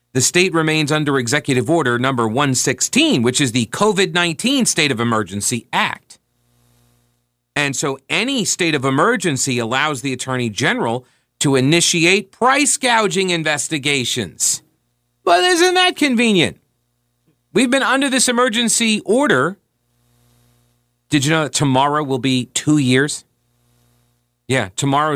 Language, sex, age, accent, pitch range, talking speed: English, male, 40-59, American, 120-170 Hz, 125 wpm